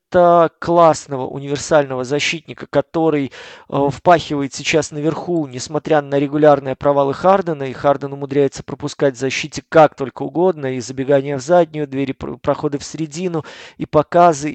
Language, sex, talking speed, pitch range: Russian, male, 135 wpm, 140-160 Hz